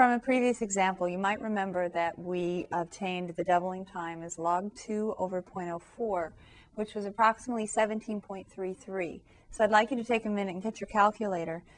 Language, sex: English, female